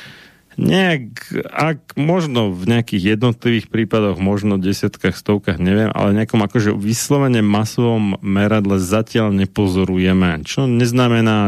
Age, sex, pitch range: 30-49, male, 100-120 Hz